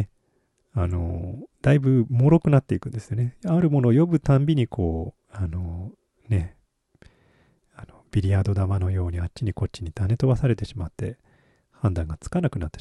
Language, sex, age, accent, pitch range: Japanese, male, 40-59, native, 100-145 Hz